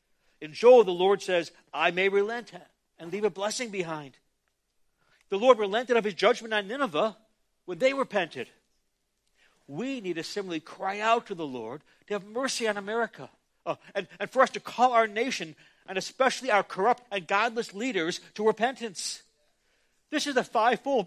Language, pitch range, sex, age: English, 190-240 Hz, male, 60-79